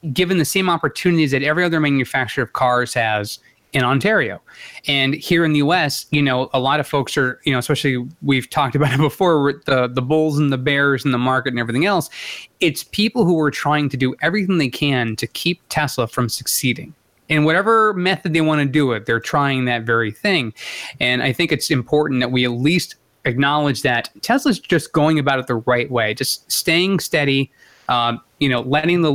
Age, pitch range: 20-39, 130-160 Hz